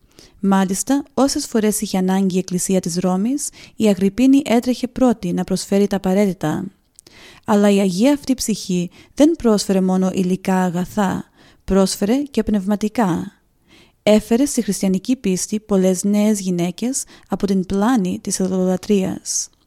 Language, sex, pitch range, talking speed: Greek, female, 185-235 Hz, 130 wpm